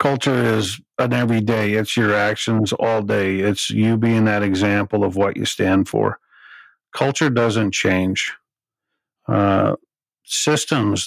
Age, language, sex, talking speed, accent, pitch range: 50-69, English, male, 130 wpm, American, 105-120 Hz